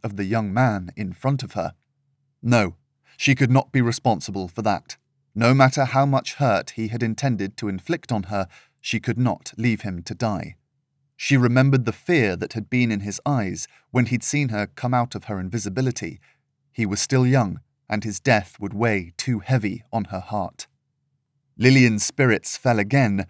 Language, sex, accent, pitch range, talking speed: English, male, British, 105-135 Hz, 185 wpm